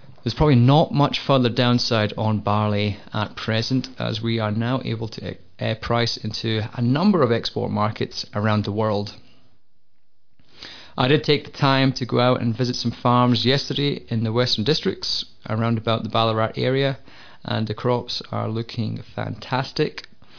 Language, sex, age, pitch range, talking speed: English, male, 20-39, 110-125 Hz, 160 wpm